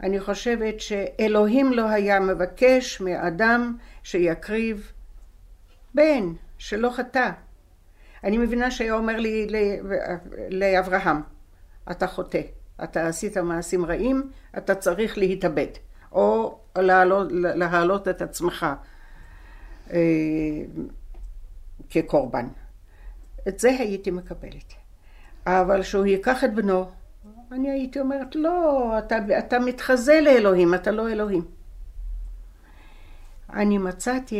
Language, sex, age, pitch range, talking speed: Hebrew, female, 60-79, 175-235 Hz, 95 wpm